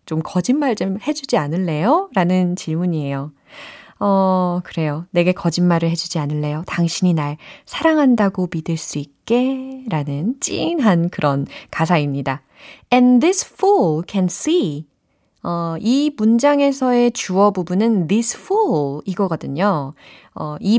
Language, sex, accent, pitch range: Korean, female, native, 155-230 Hz